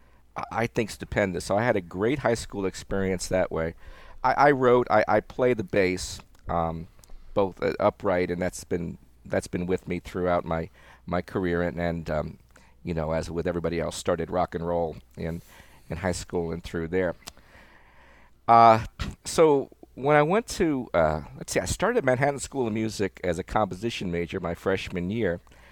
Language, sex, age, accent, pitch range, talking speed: English, male, 50-69, American, 85-115 Hz, 185 wpm